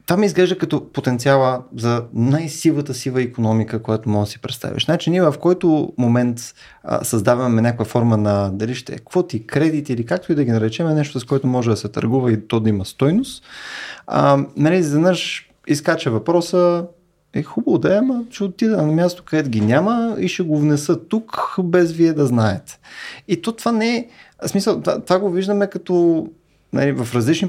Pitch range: 115-170 Hz